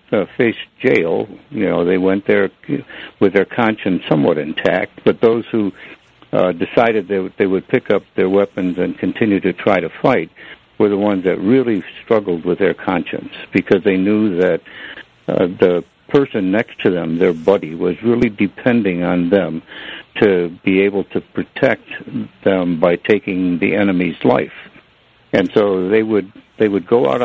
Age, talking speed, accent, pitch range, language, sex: 60-79, 175 wpm, American, 90-100 Hz, English, male